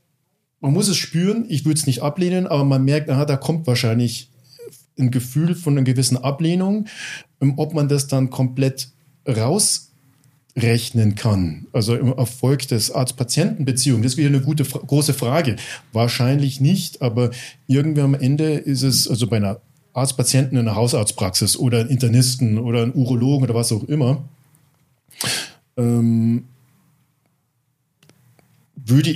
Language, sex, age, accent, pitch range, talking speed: German, male, 40-59, German, 120-145 Hz, 140 wpm